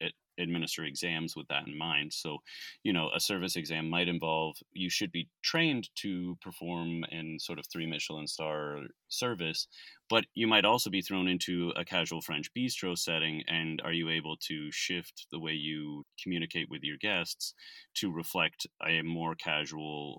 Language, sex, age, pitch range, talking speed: English, male, 30-49, 80-95 Hz, 170 wpm